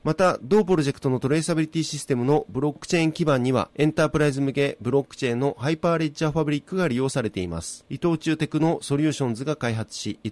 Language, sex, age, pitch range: Japanese, male, 30-49, 135-160 Hz